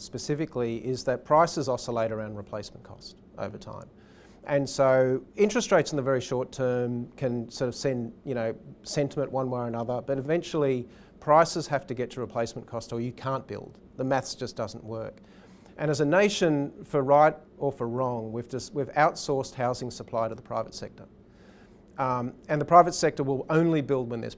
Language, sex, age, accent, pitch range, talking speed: English, male, 40-59, Australian, 120-150 Hz, 190 wpm